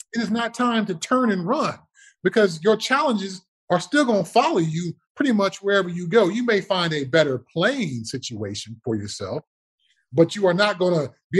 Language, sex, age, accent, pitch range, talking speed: English, male, 30-49, American, 150-225 Hz, 200 wpm